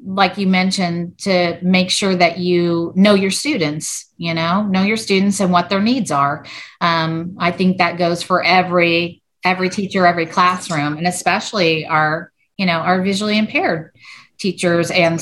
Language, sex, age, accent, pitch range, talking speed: English, female, 40-59, American, 170-210 Hz, 165 wpm